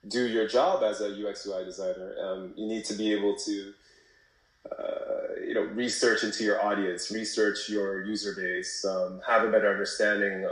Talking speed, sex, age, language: 175 wpm, male, 20-39, English